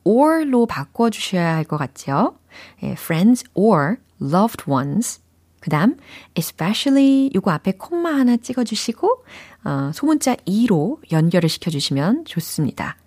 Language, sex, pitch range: Korean, female, 155-235 Hz